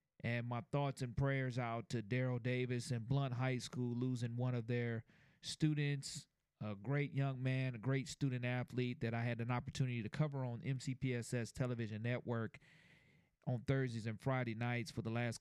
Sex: male